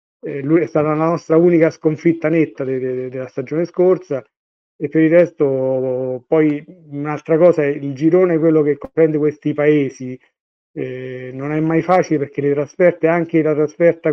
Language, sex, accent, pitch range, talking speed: Italian, male, native, 135-160 Hz, 160 wpm